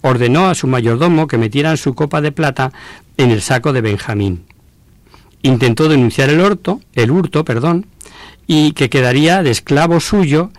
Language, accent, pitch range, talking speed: Spanish, Spanish, 115-155 Hz, 160 wpm